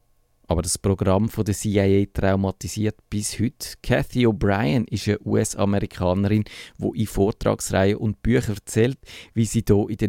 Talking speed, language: 135 wpm, German